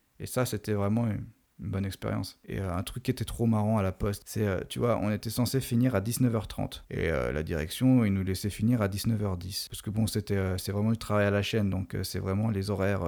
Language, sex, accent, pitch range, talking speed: French, male, French, 105-125 Hz, 255 wpm